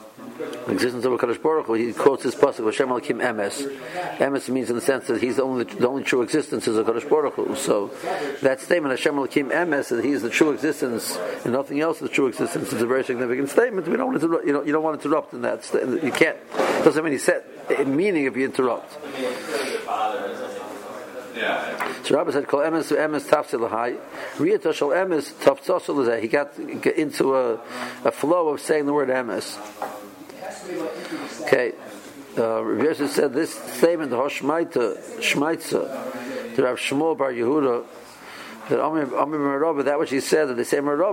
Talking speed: 175 wpm